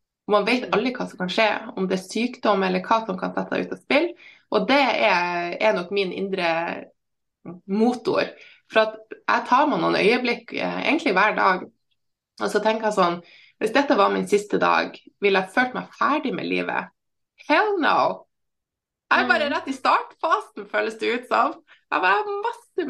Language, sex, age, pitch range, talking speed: English, female, 20-39, 190-265 Hz, 185 wpm